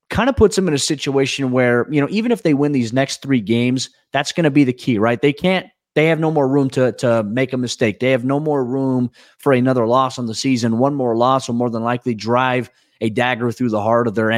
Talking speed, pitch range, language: 265 wpm, 115-135 Hz, English